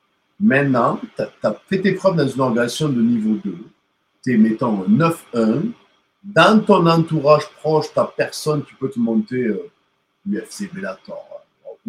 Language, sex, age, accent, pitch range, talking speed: French, male, 50-69, French, 125-185 Hz, 170 wpm